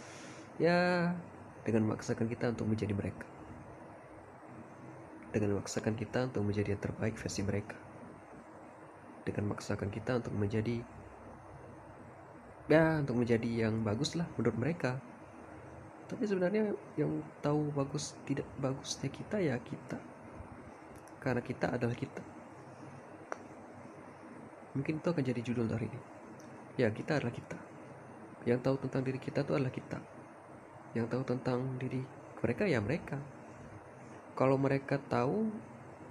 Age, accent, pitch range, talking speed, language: 20-39, native, 110-145 Hz, 120 wpm, Indonesian